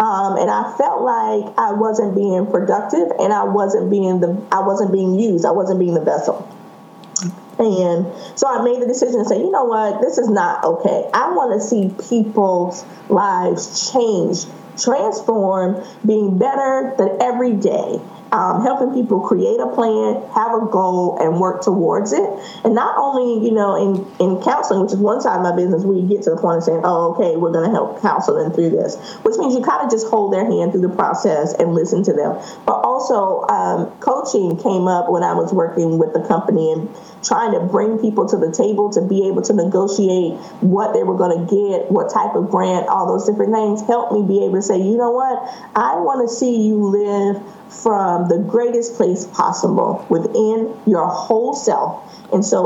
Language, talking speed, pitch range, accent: English, 205 wpm, 185-230 Hz, American